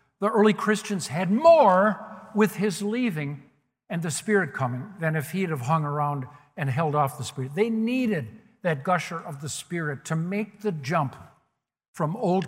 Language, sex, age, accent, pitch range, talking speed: English, male, 60-79, American, 140-190 Hz, 175 wpm